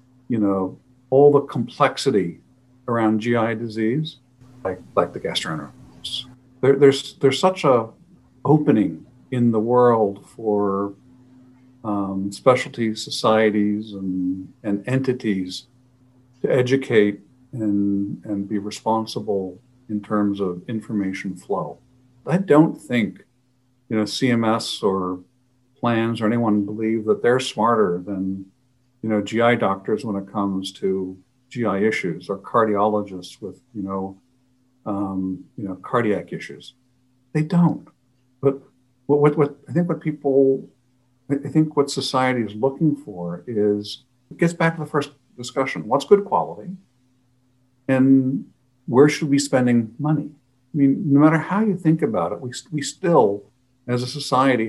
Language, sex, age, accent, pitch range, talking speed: English, male, 50-69, American, 105-135 Hz, 135 wpm